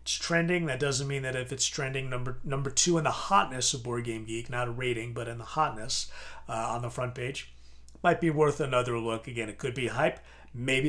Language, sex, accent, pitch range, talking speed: English, male, American, 120-150 Hz, 230 wpm